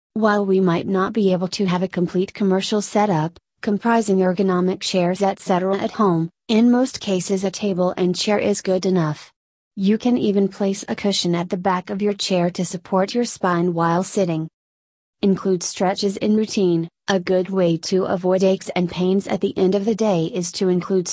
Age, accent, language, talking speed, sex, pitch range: 30-49, American, English, 190 wpm, female, 180-205 Hz